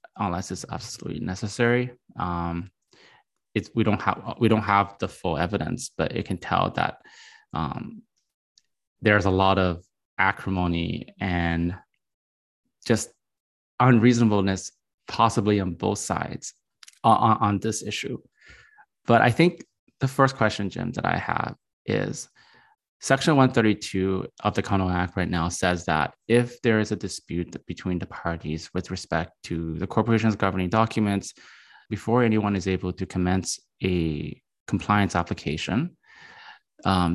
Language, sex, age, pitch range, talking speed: English, male, 20-39, 90-110 Hz, 135 wpm